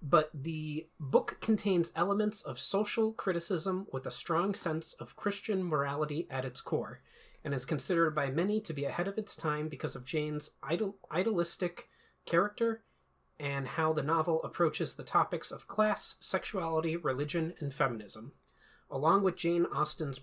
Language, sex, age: English, male, 30-49